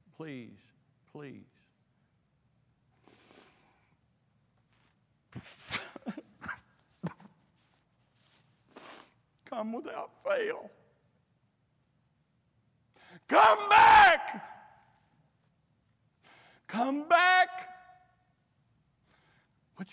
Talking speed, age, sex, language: 30 wpm, 60-79, male, English